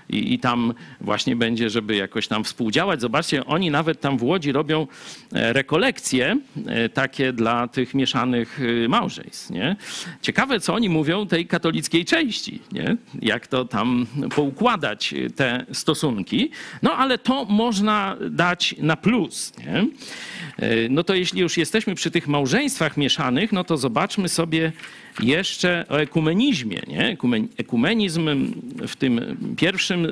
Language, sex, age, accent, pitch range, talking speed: Polish, male, 50-69, native, 140-210 Hz, 125 wpm